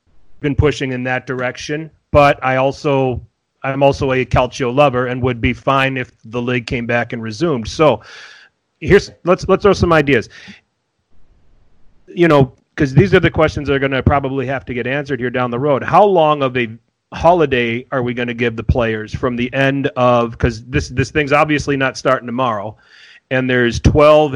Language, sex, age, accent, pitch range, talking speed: English, male, 30-49, American, 115-135 Hz, 190 wpm